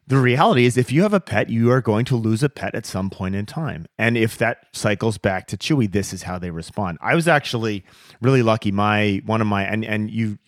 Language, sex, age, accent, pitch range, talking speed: English, male, 30-49, American, 95-125 Hz, 250 wpm